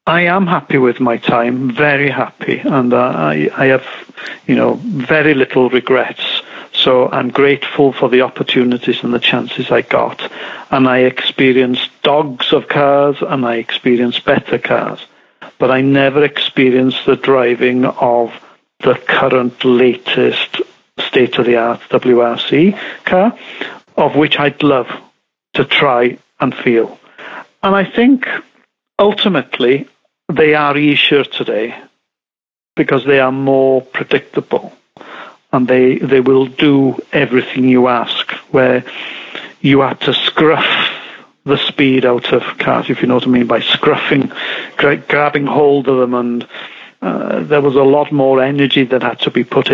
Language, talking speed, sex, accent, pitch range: English, 140 wpm, male, British, 125-145 Hz